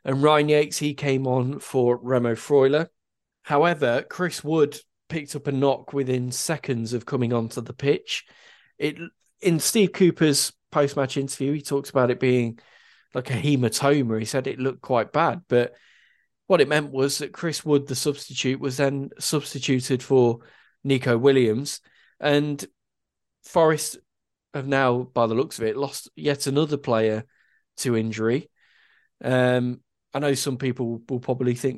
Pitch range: 125-150 Hz